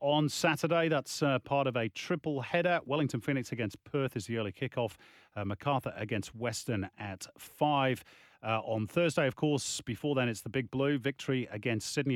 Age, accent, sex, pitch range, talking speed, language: 30-49, British, male, 110-145 Hz, 185 wpm, English